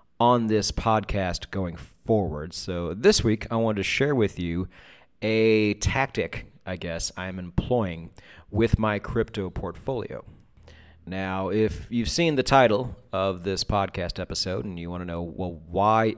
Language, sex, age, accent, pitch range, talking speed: English, male, 30-49, American, 95-115 Hz, 150 wpm